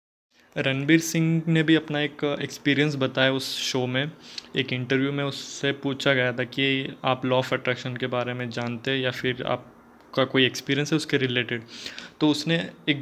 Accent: native